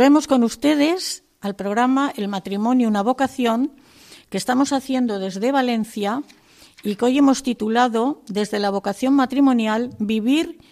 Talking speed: 135 wpm